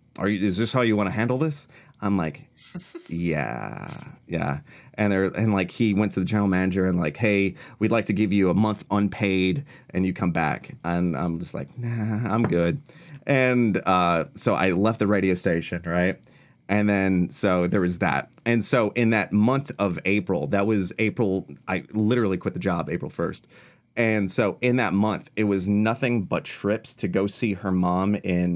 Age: 30-49